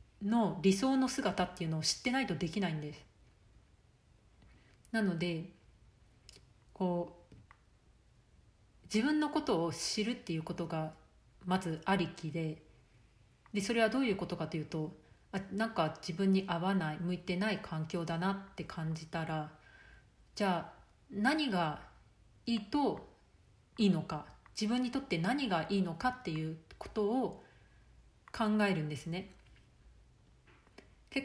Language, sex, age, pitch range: Japanese, female, 40-59, 160-205 Hz